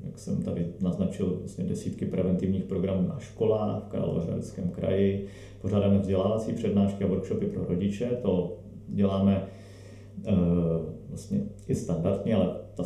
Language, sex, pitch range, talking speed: Czech, male, 95-105 Hz, 130 wpm